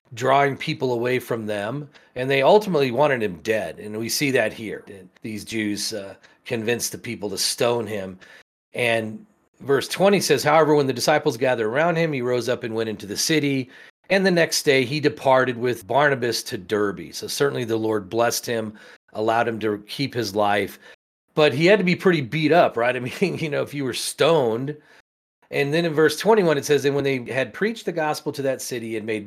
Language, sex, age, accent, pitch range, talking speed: English, male, 40-59, American, 110-150 Hz, 210 wpm